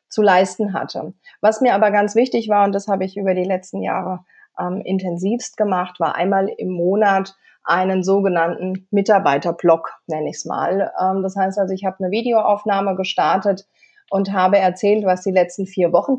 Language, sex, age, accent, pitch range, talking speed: German, female, 30-49, German, 180-215 Hz, 180 wpm